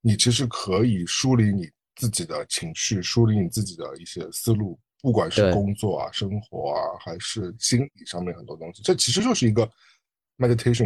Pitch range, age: 100-120 Hz, 50-69